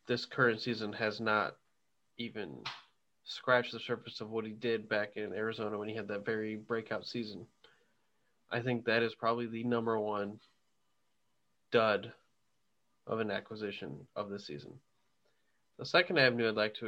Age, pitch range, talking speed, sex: 20-39, 105-120 Hz, 155 wpm, male